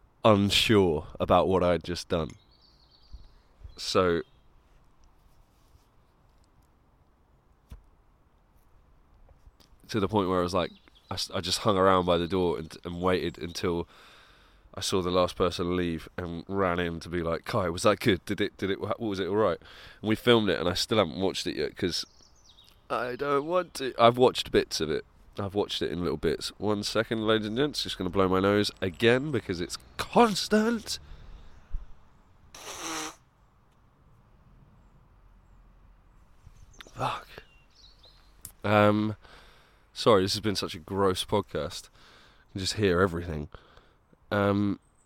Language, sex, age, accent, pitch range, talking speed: English, male, 20-39, British, 85-110 Hz, 145 wpm